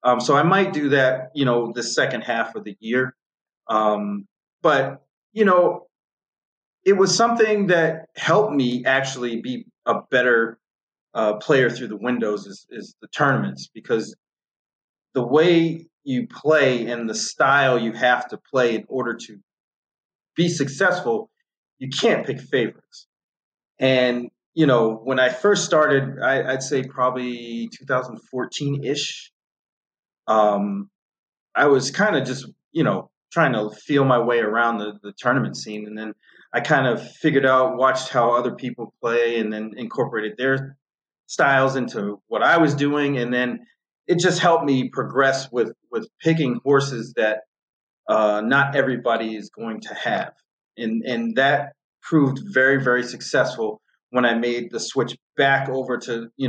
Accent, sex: American, male